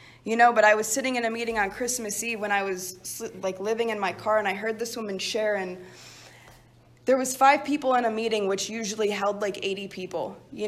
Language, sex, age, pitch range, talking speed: English, female, 20-39, 190-230 Hz, 230 wpm